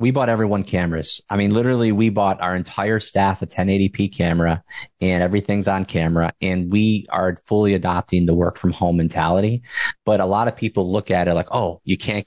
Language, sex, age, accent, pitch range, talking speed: English, male, 30-49, American, 90-100 Hz, 200 wpm